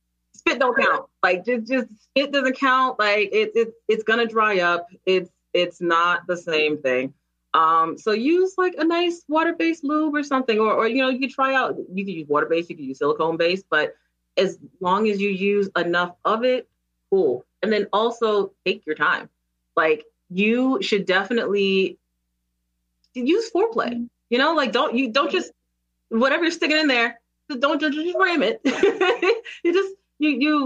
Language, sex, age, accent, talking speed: English, female, 30-49, American, 180 wpm